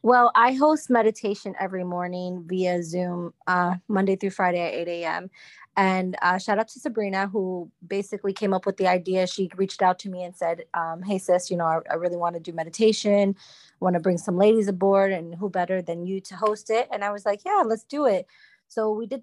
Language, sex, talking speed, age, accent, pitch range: English, female, 230 wpm, 20-39, American, 180-220 Hz